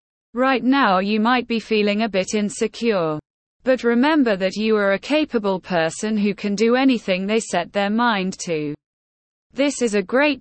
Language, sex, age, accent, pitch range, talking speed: English, female, 20-39, British, 190-245 Hz, 175 wpm